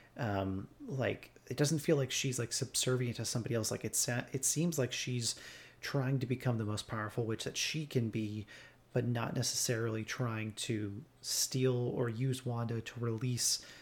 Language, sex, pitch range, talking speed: English, male, 115-135 Hz, 175 wpm